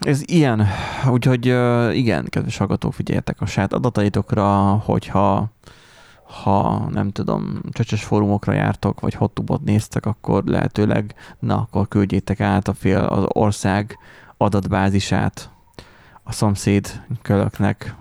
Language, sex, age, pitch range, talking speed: Hungarian, male, 20-39, 100-115 Hz, 115 wpm